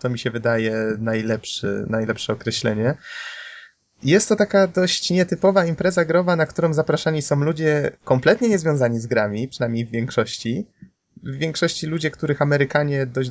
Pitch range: 115-150 Hz